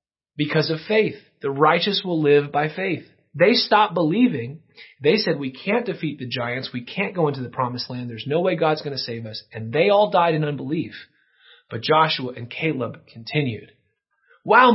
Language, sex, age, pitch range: English, male, 30-49, 140-210 Hz